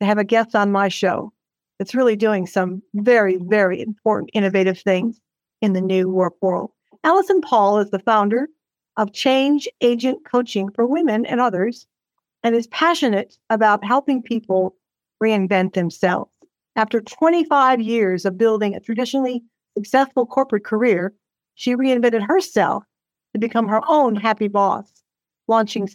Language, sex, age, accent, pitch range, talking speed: English, female, 60-79, American, 200-245 Hz, 145 wpm